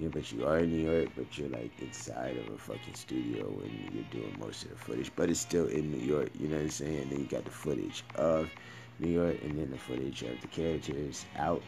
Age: 30-49